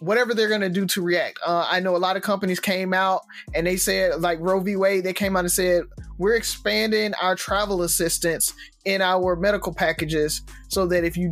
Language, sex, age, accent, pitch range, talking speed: English, male, 20-39, American, 170-205 Hz, 215 wpm